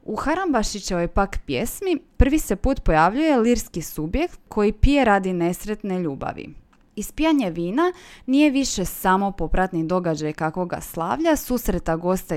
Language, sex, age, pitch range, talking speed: Croatian, female, 20-39, 170-240 Hz, 125 wpm